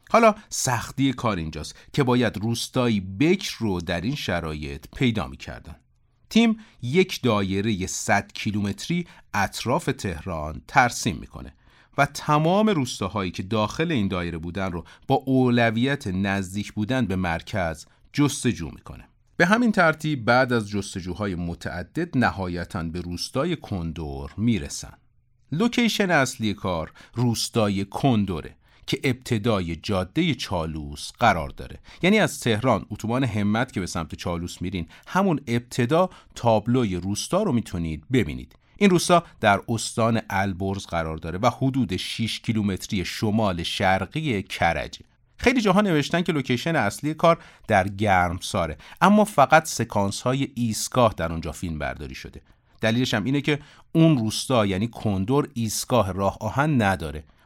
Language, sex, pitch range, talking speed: Persian, male, 90-135 Hz, 135 wpm